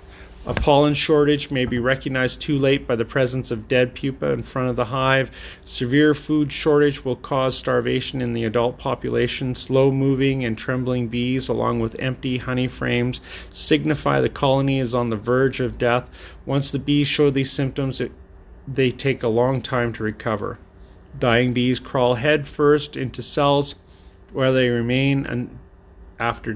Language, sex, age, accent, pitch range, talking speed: English, male, 40-59, American, 125-145 Hz, 160 wpm